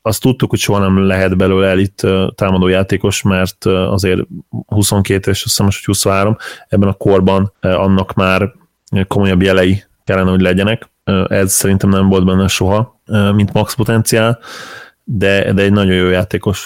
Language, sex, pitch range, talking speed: Hungarian, male, 95-105 Hz, 150 wpm